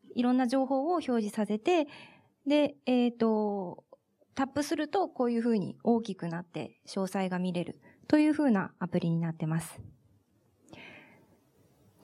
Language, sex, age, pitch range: Japanese, female, 20-39, 205-270 Hz